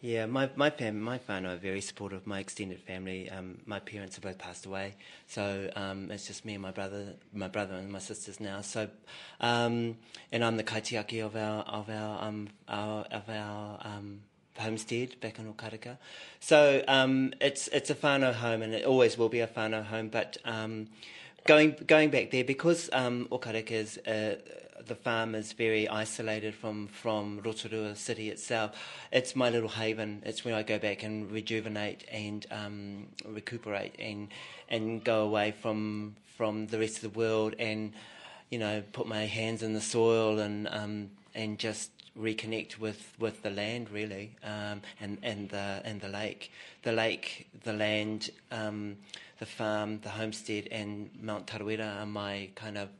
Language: English